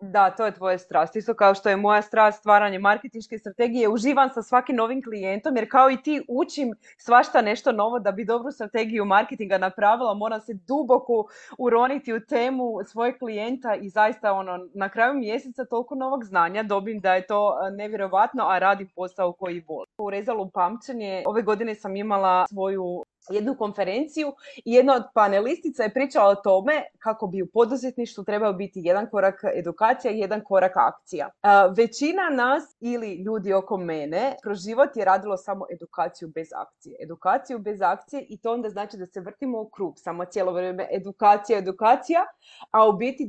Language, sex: Croatian, female